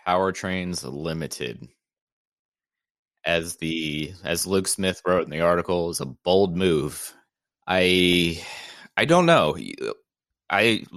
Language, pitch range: English, 80-95 Hz